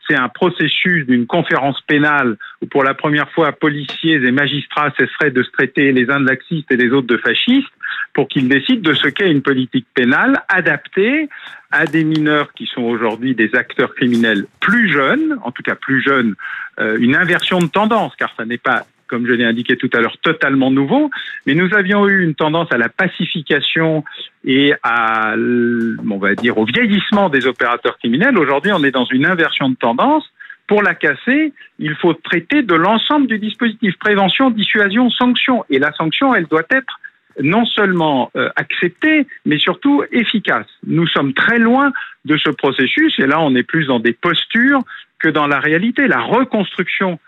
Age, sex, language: 50-69, male, French